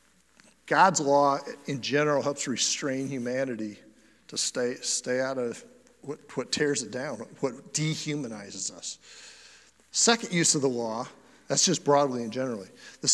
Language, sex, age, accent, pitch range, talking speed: English, male, 50-69, American, 135-185 Hz, 140 wpm